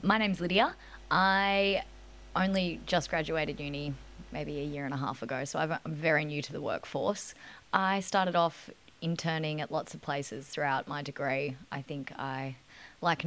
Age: 20-39